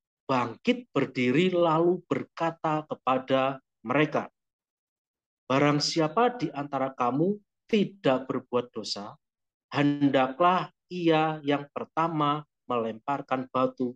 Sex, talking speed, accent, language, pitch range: male, 85 wpm, native, Indonesian, 130-180 Hz